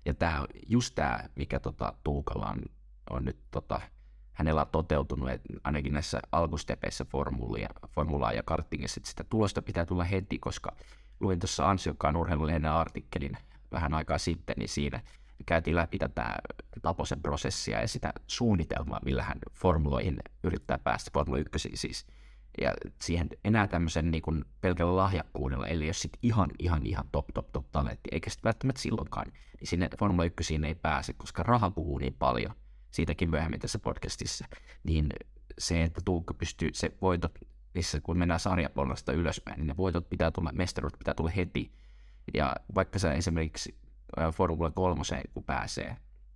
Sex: male